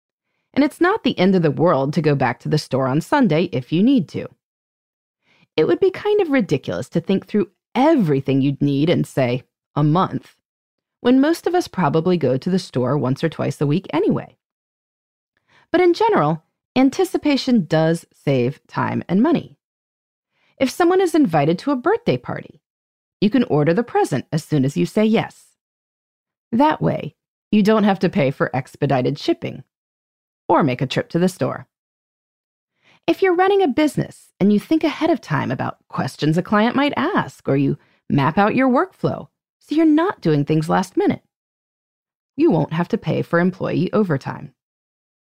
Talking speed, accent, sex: 175 wpm, American, female